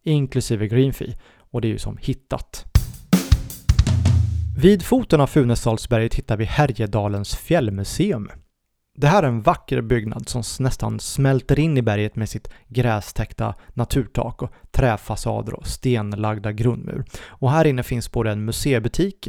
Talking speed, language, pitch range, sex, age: 135 wpm, Swedish, 110-135 Hz, male, 30-49